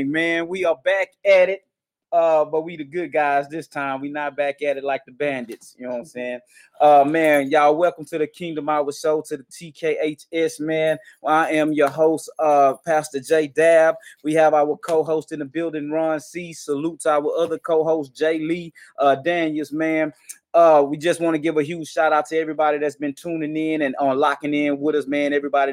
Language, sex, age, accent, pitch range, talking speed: English, male, 20-39, American, 140-160 Hz, 220 wpm